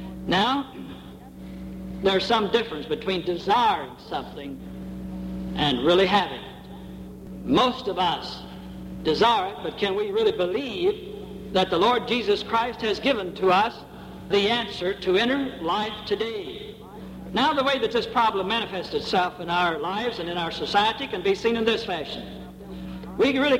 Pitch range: 170-250 Hz